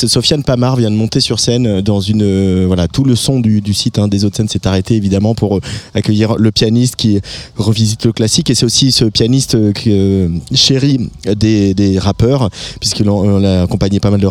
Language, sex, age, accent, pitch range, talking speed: French, male, 20-39, French, 100-120 Hz, 195 wpm